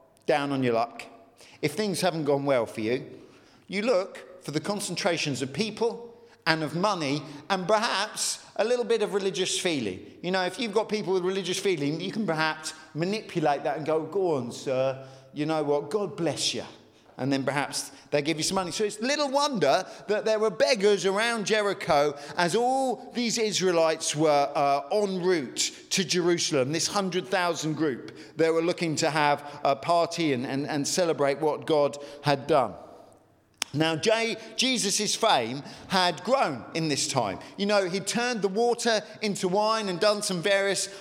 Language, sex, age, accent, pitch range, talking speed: English, male, 50-69, British, 155-220 Hz, 175 wpm